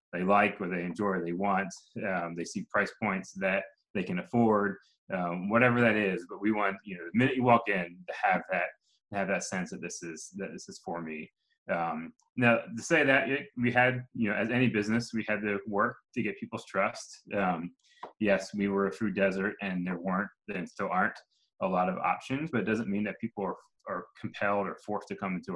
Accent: American